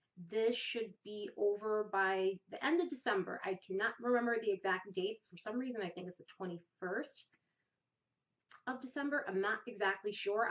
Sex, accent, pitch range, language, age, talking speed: female, American, 185-230 Hz, English, 30-49, 165 wpm